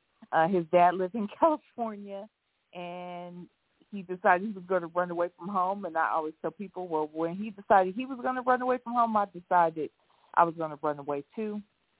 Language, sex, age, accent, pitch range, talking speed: English, female, 40-59, American, 155-200 Hz, 215 wpm